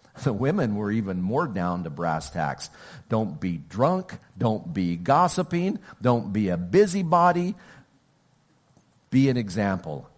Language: English